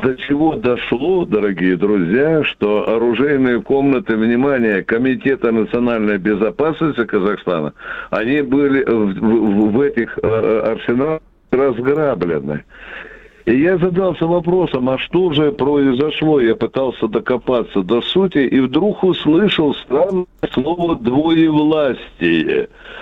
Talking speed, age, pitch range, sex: 105 wpm, 60-79, 120-175 Hz, male